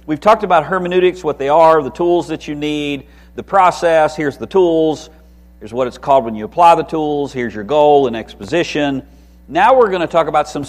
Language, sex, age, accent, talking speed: English, male, 50-69, American, 215 wpm